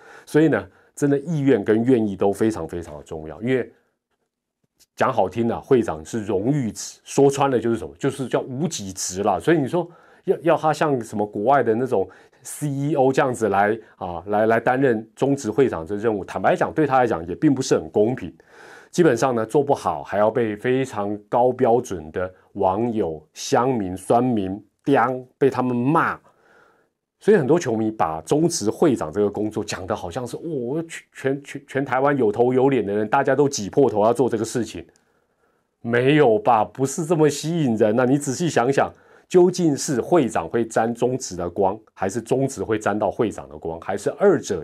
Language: Chinese